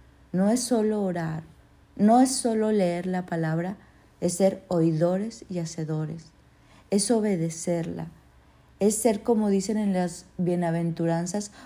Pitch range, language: 170-205 Hz, Spanish